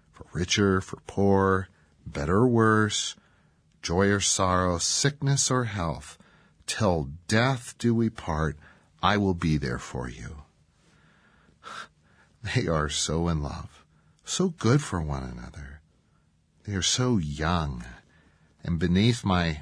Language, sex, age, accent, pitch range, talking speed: English, male, 40-59, American, 80-105 Hz, 125 wpm